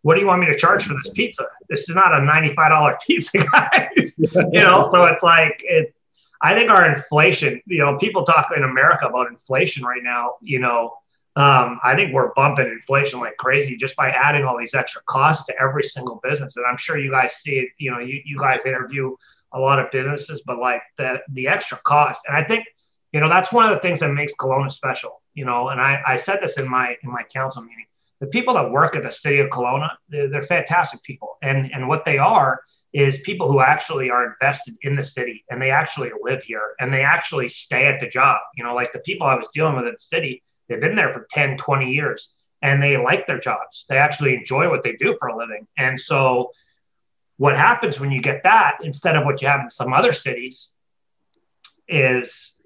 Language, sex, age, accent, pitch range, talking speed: English, male, 30-49, American, 130-150 Hz, 225 wpm